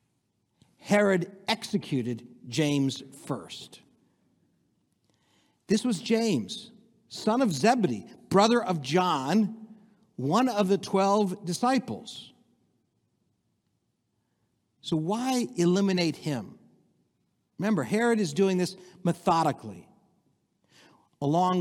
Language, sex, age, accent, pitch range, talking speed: English, male, 60-79, American, 145-205 Hz, 80 wpm